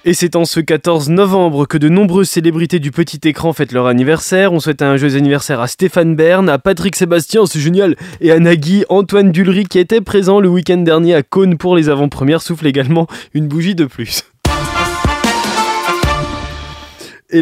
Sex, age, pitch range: male, 20-39, 140-180 Hz